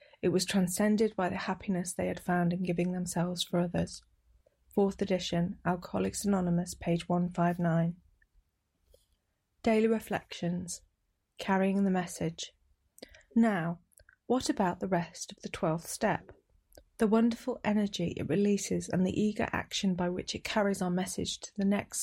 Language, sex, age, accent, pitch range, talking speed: English, female, 30-49, British, 175-205 Hz, 140 wpm